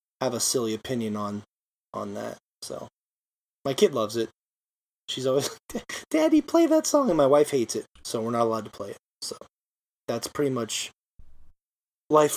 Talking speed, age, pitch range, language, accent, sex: 175 wpm, 20-39, 135-220 Hz, English, American, male